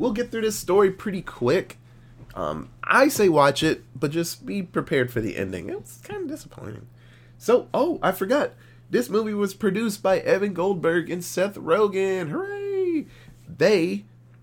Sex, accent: male, American